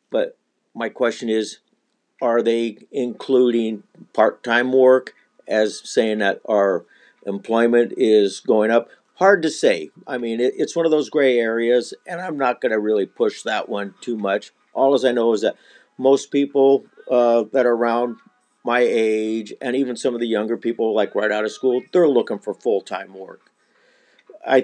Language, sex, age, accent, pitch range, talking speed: English, male, 50-69, American, 110-130 Hz, 175 wpm